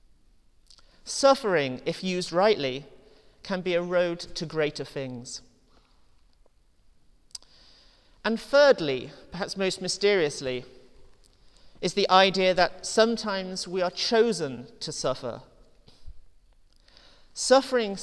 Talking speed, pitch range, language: 90 wpm, 135-205 Hz, English